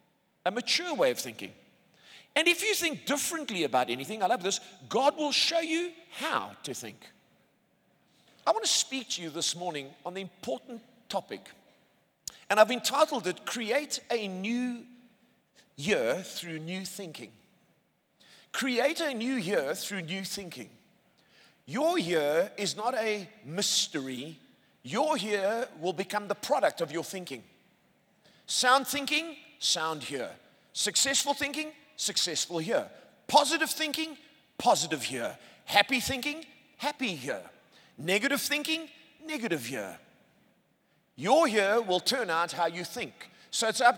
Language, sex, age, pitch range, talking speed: English, male, 50-69, 185-285 Hz, 135 wpm